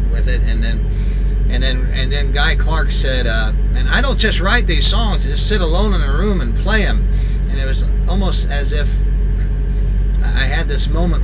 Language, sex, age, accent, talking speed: English, male, 30-49, American, 210 wpm